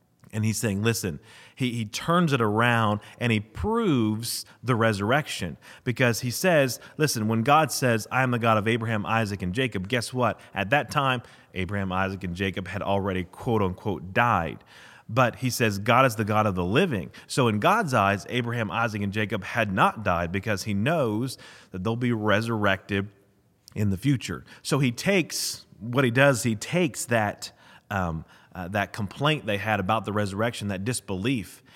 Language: English